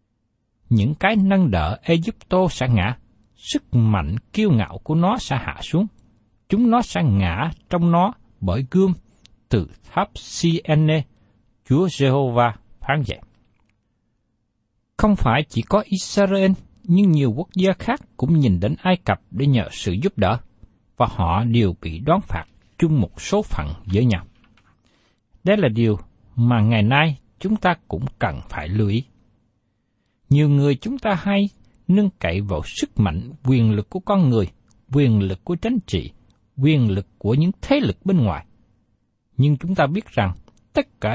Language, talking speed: Vietnamese, 160 wpm